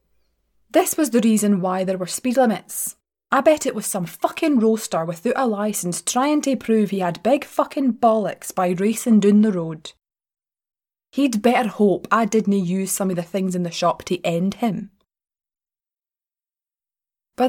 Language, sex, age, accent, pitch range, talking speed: English, female, 20-39, British, 180-240 Hz, 170 wpm